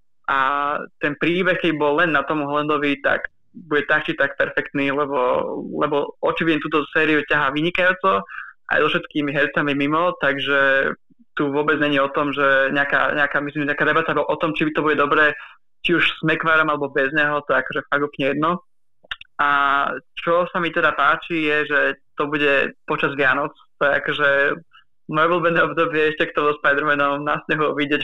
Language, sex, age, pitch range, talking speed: Slovak, male, 20-39, 145-160 Hz, 170 wpm